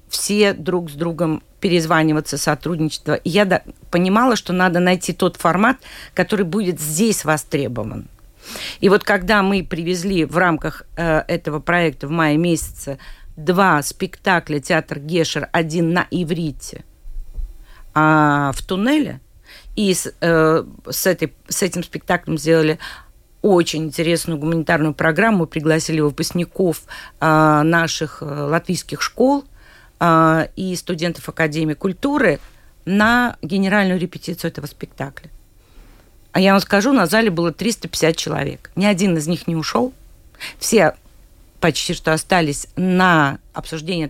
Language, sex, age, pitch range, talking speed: Russian, female, 50-69, 155-185 Hz, 125 wpm